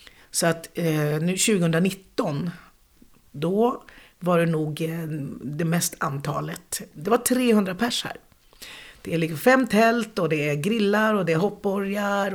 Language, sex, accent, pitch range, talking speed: Swedish, female, native, 165-230 Hz, 145 wpm